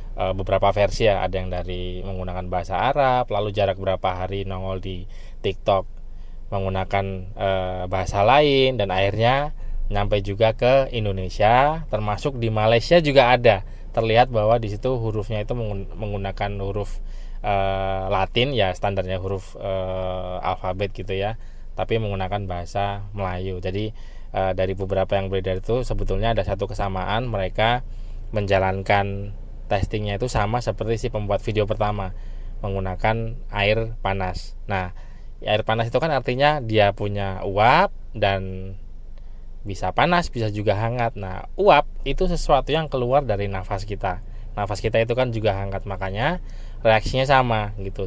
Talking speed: 135 wpm